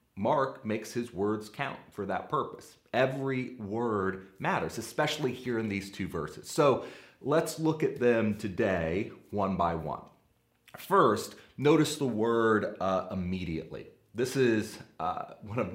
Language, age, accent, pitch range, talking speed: English, 30-49, American, 95-130 Hz, 140 wpm